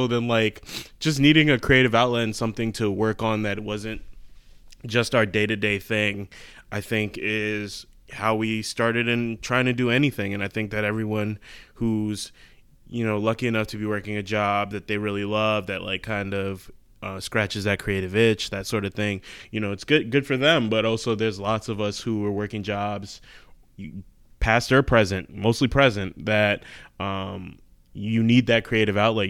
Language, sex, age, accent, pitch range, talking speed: English, male, 20-39, American, 100-110 Hz, 185 wpm